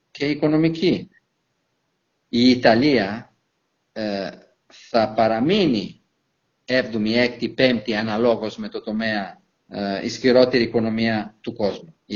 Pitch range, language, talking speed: 110-130 Hz, Greek, 100 wpm